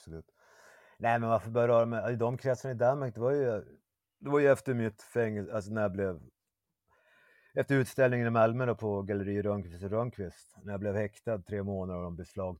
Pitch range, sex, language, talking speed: 90-115 Hz, male, Swedish, 200 wpm